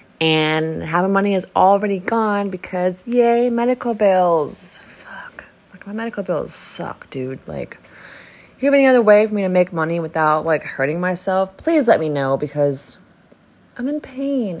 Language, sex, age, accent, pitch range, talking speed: English, female, 20-39, American, 140-210 Hz, 165 wpm